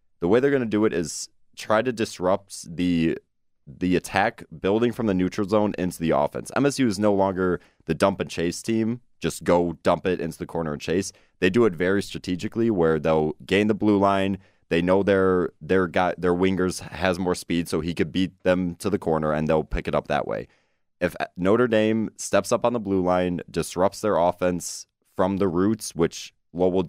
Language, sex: English, male